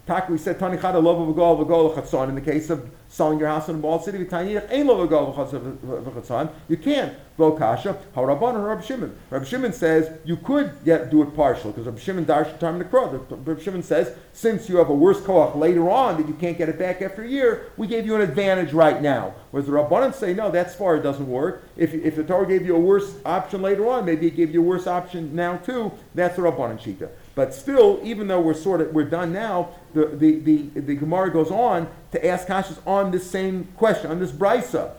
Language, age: English, 50-69